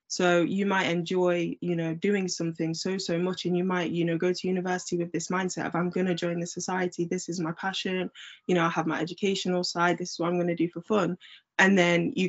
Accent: British